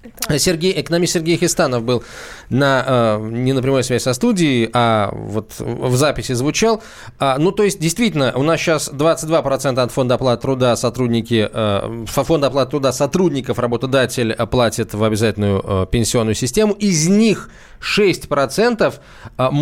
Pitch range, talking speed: 120-165 Hz, 130 wpm